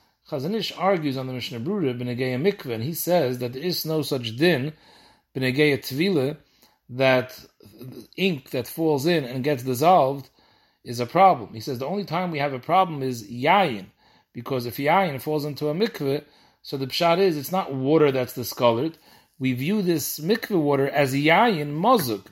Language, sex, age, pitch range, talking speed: English, male, 40-59, 130-180 Hz, 175 wpm